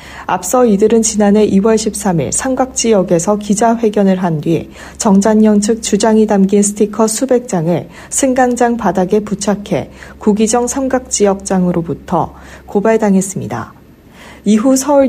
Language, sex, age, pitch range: Korean, female, 40-59, 185-225 Hz